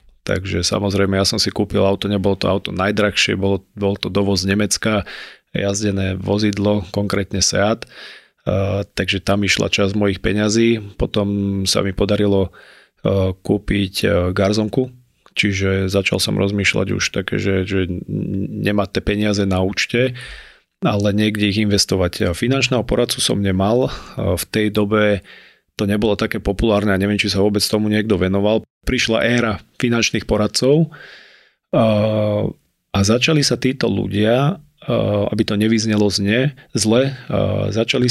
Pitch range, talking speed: 100-110 Hz, 135 wpm